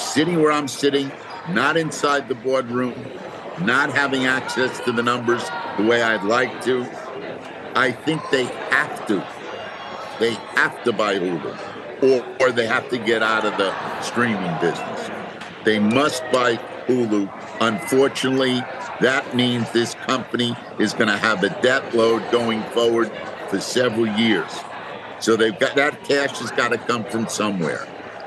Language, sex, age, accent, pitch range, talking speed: English, male, 50-69, American, 115-140 Hz, 155 wpm